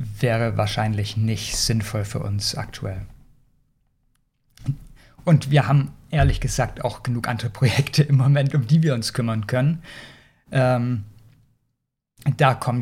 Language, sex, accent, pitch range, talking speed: German, male, German, 120-160 Hz, 125 wpm